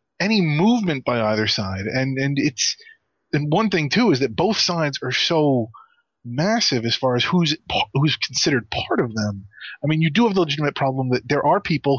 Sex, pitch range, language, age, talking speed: male, 120-160 Hz, English, 30-49, 205 wpm